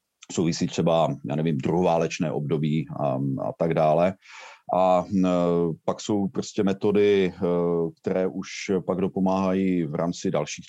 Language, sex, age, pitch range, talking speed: Czech, male, 40-59, 80-95 Hz, 130 wpm